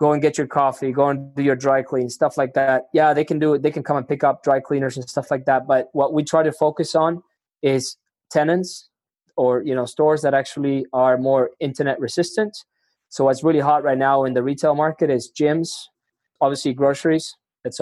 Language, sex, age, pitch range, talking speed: English, male, 20-39, 130-155 Hz, 220 wpm